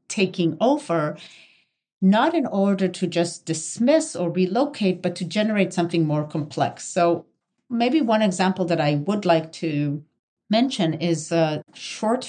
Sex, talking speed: female, 140 wpm